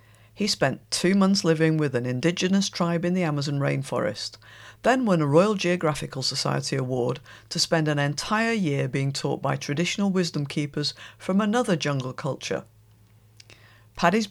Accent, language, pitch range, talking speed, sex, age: British, English, 135-175 Hz, 150 wpm, female, 50-69